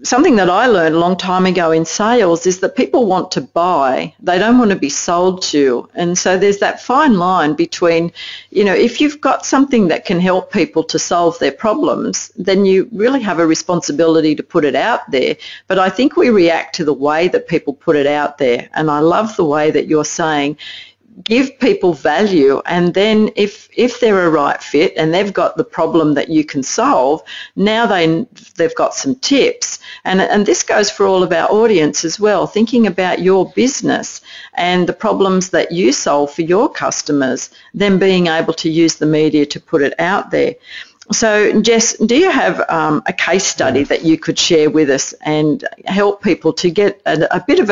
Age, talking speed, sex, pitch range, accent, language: 50-69, 205 wpm, female, 160-210 Hz, Australian, English